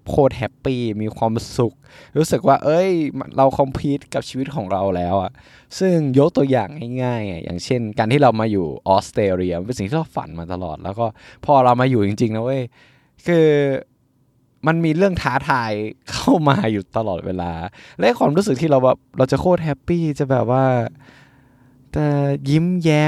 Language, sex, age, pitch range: Thai, male, 20-39, 110-145 Hz